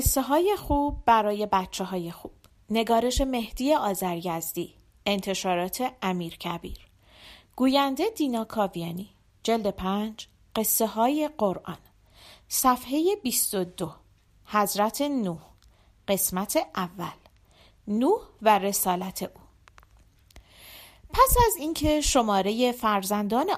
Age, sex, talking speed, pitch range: 40-59, female, 90 wpm, 190-295 Hz